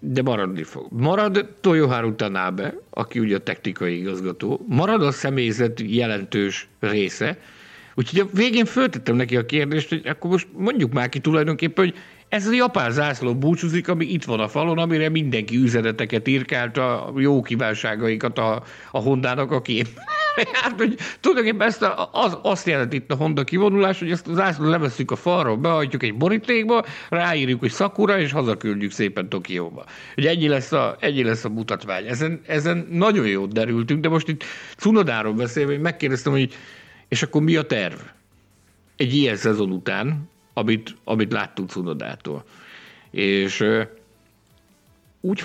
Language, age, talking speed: Hungarian, 50-69, 150 wpm